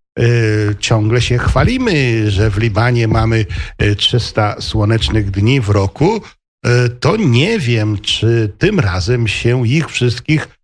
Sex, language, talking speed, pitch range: male, Polish, 120 wpm, 105-130 Hz